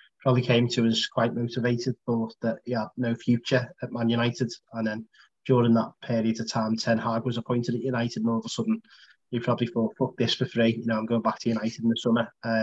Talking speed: 235 wpm